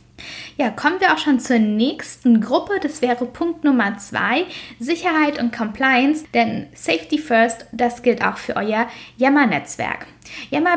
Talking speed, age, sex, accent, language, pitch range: 145 wpm, 10-29, female, German, German, 230-295 Hz